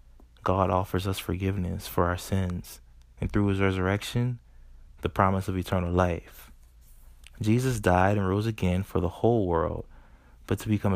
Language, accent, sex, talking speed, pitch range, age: English, American, male, 155 wpm, 65-100 Hz, 20-39